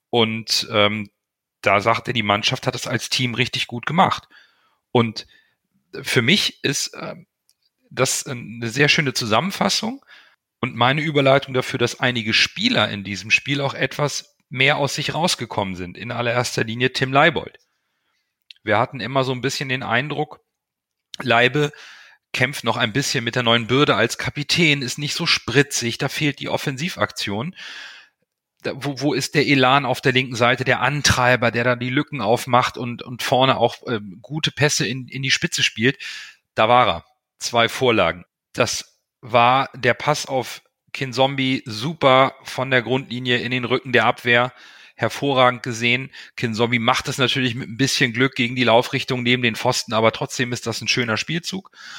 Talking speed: 165 wpm